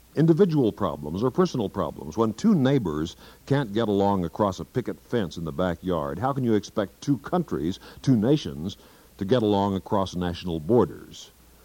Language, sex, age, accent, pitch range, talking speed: English, male, 60-79, American, 90-130 Hz, 165 wpm